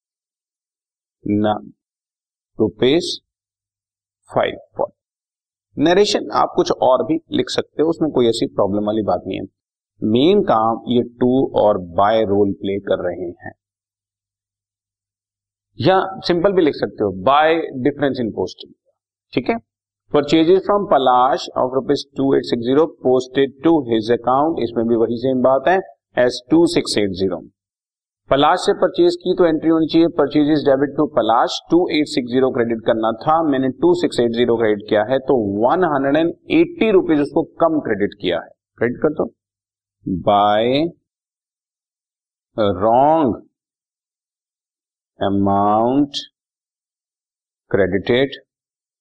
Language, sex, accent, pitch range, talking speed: Hindi, male, native, 105-165 Hz, 120 wpm